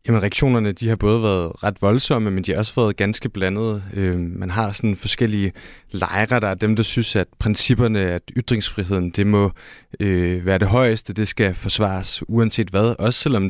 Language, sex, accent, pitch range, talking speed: Danish, male, native, 95-115 Hz, 190 wpm